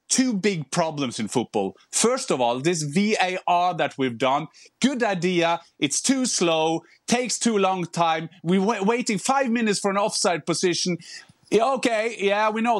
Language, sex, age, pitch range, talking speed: English, male, 30-49, 185-255 Hz, 165 wpm